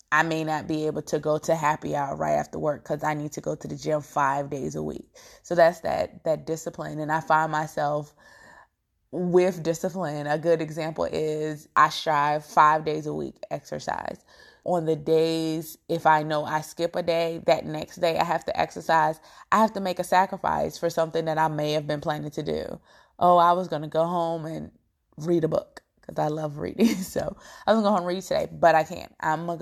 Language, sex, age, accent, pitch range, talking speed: English, female, 20-39, American, 150-170 Hz, 220 wpm